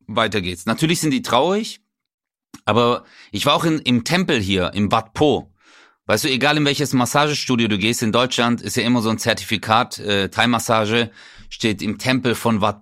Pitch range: 110-135 Hz